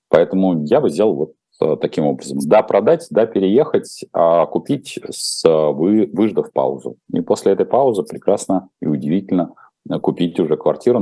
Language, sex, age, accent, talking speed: Russian, male, 40-59, native, 145 wpm